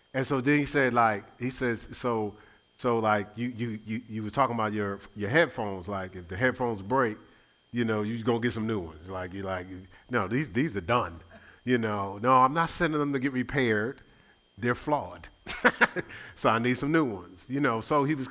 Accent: American